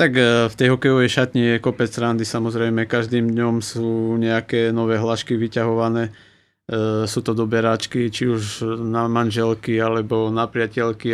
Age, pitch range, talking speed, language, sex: 20-39, 110-120 Hz, 140 wpm, Slovak, male